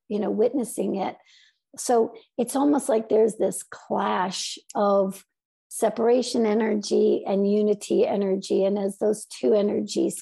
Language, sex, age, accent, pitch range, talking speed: English, female, 60-79, American, 205-230 Hz, 130 wpm